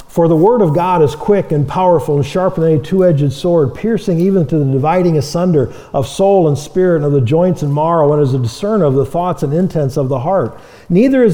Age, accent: 50-69, American